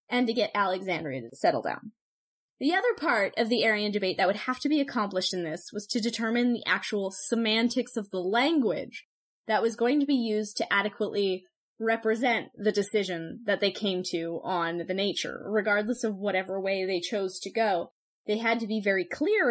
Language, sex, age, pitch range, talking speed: English, female, 10-29, 190-235 Hz, 195 wpm